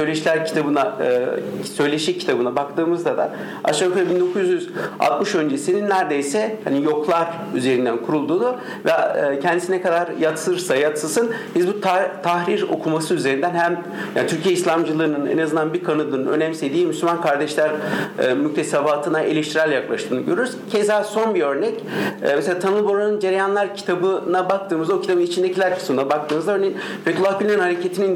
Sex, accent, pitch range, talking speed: male, native, 160-205 Hz, 130 wpm